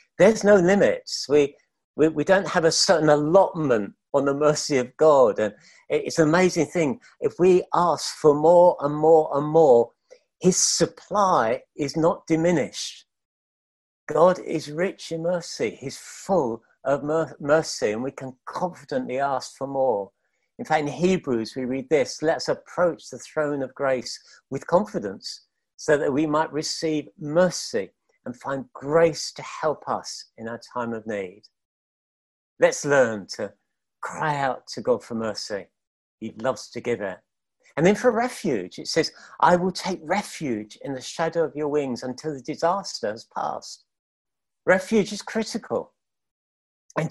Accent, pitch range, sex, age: British, 140-185 Hz, male, 50-69